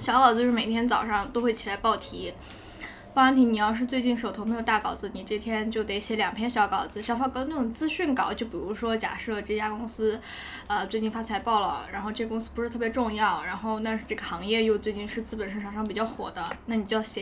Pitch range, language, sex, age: 205-245 Hz, Chinese, female, 10-29